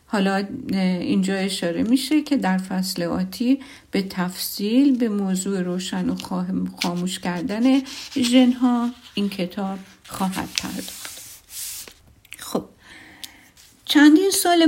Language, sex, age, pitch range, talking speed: Persian, female, 50-69, 185-265 Hz, 100 wpm